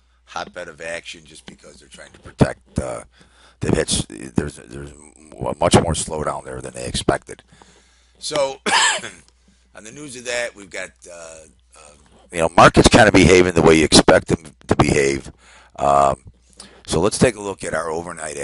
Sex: male